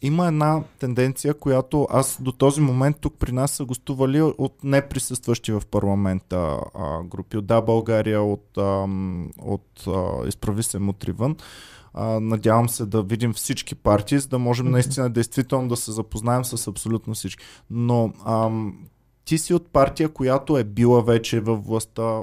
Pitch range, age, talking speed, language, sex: 115-145 Hz, 20-39, 160 wpm, Bulgarian, male